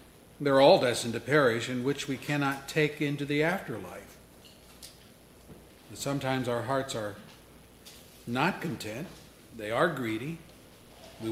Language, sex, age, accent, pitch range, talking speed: English, male, 50-69, American, 115-155 Hz, 120 wpm